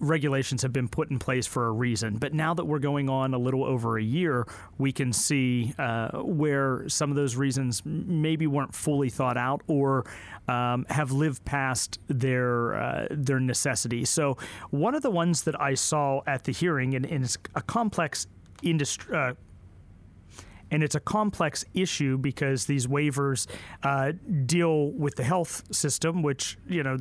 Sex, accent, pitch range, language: male, American, 130-150 Hz, English